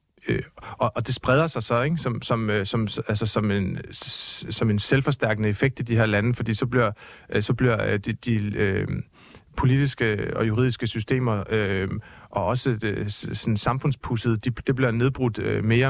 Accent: native